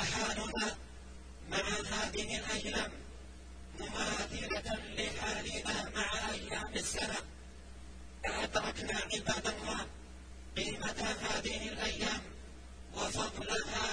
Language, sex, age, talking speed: Arabic, female, 50-69, 70 wpm